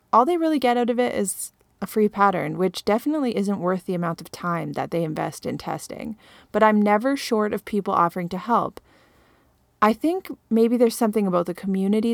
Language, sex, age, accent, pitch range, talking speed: English, female, 30-49, American, 185-235 Hz, 205 wpm